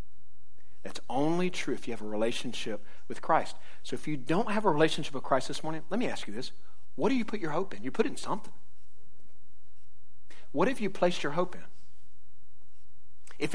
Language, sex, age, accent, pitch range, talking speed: English, male, 50-69, American, 125-165 Hz, 205 wpm